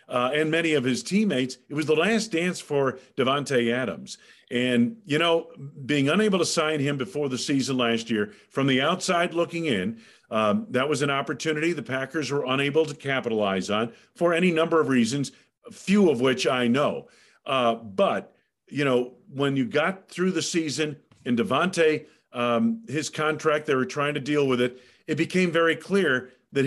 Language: English